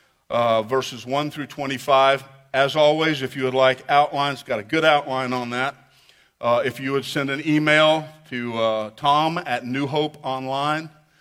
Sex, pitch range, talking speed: male, 130-155 Hz, 175 wpm